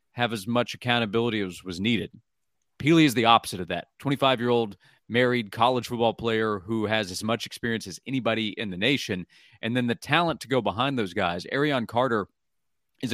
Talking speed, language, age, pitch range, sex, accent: 185 wpm, English, 30-49, 105-125 Hz, male, American